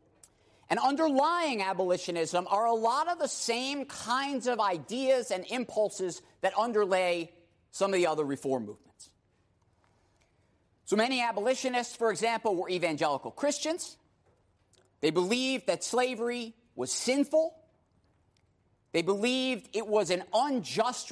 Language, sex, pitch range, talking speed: English, male, 165-255 Hz, 120 wpm